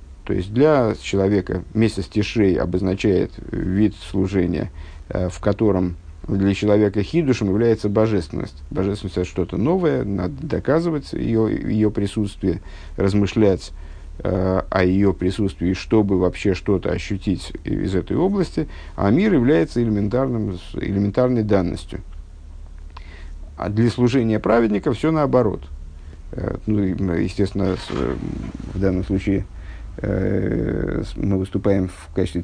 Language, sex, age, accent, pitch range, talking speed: Russian, male, 50-69, native, 90-110 Hz, 110 wpm